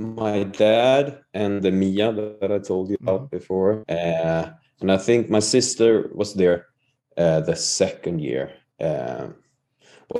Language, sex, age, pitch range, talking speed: English, male, 30-49, 90-110 Hz, 140 wpm